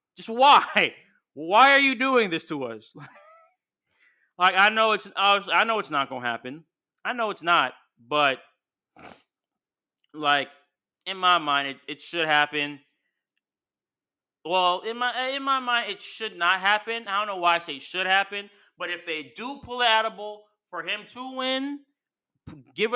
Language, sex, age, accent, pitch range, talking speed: English, male, 20-39, American, 150-210 Hz, 165 wpm